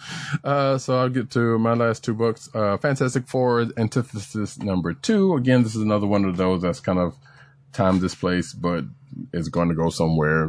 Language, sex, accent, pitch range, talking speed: English, male, American, 85-120 Hz, 190 wpm